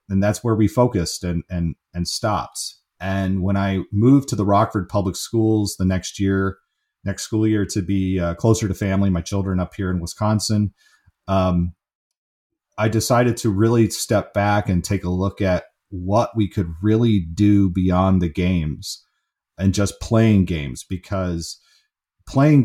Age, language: 40-59, English